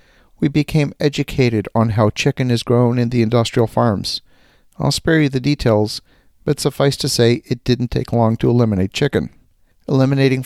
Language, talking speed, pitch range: English, 165 wpm, 115-140 Hz